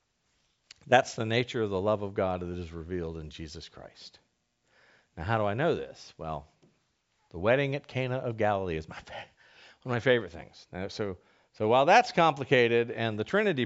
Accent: American